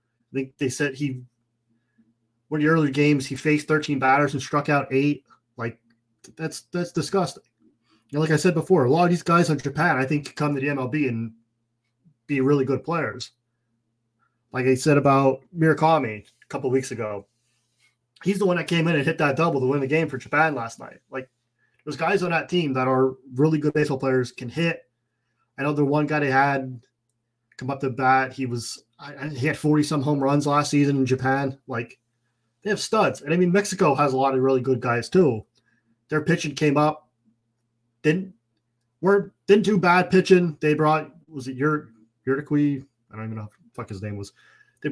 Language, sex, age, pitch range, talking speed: English, male, 20-39, 120-155 Hz, 205 wpm